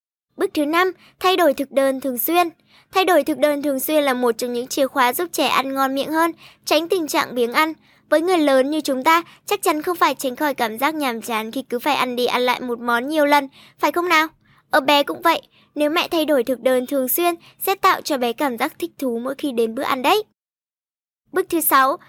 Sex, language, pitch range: male, Vietnamese, 260-320 Hz